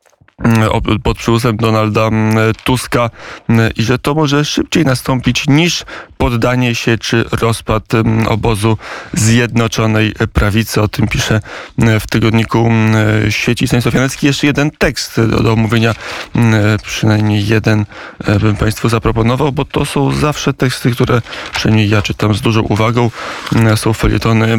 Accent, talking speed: native, 120 wpm